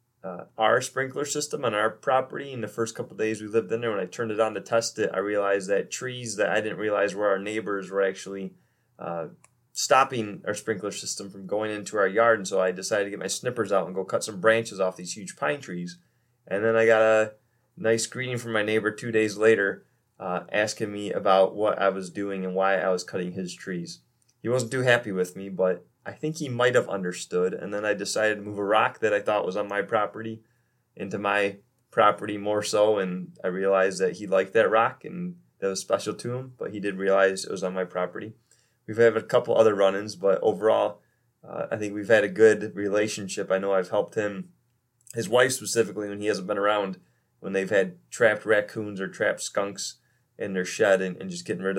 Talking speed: 225 wpm